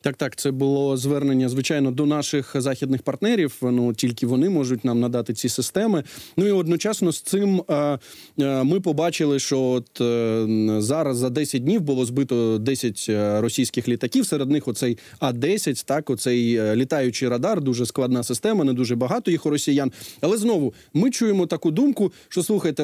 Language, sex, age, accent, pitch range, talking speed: Ukrainian, male, 20-39, native, 130-175 Hz, 160 wpm